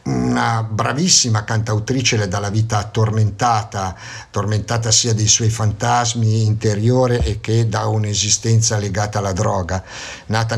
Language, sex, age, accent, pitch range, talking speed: Italian, male, 50-69, native, 105-125 Hz, 125 wpm